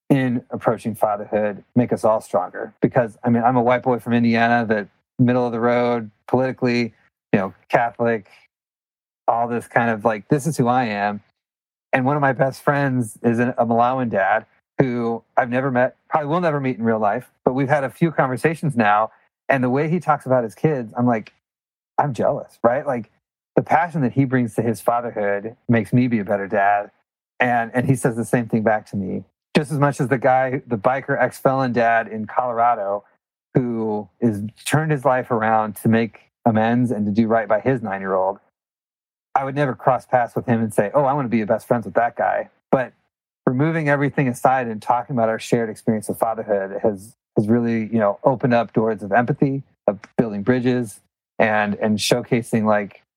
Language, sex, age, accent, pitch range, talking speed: English, male, 30-49, American, 110-130 Hz, 200 wpm